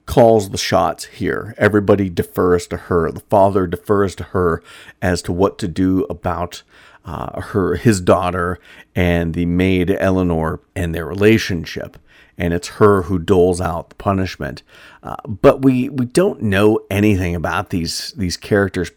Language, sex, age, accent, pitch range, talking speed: English, male, 50-69, American, 90-110 Hz, 155 wpm